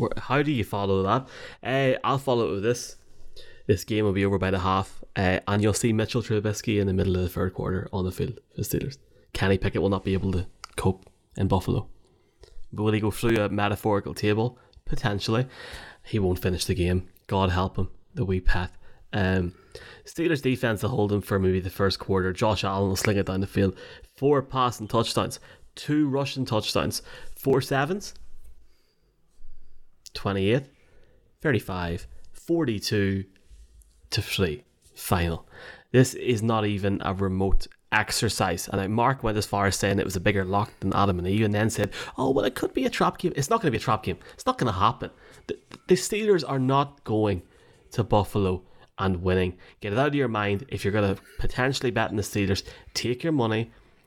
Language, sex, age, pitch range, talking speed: English, male, 20-39, 95-120 Hz, 195 wpm